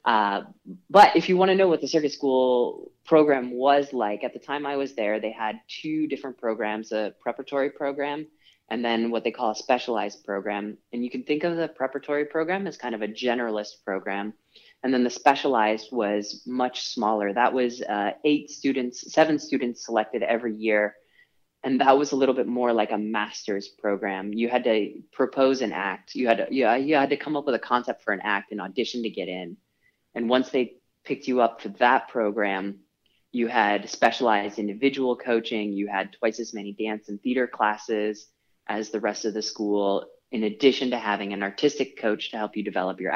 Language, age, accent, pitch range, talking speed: English, 20-39, American, 105-135 Hz, 200 wpm